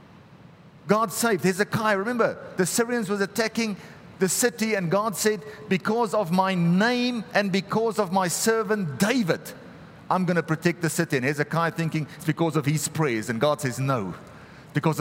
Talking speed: 170 wpm